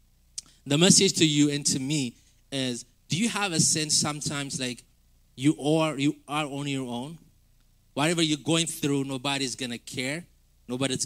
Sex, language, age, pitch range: male, English, 20-39, 140-180 Hz